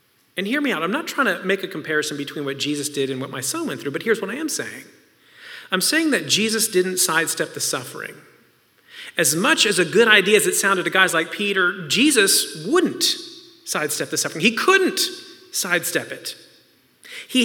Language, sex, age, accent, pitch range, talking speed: English, male, 40-59, American, 185-290 Hz, 200 wpm